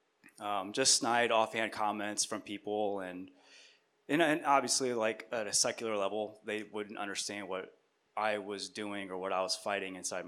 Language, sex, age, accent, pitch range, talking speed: English, male, 20-39, American, 95-110 Hz, 165 wpm